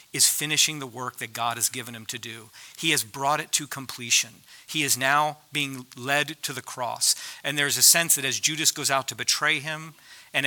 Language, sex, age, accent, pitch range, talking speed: English, male, 50-69, American, 120-140 Hz, 220 wpm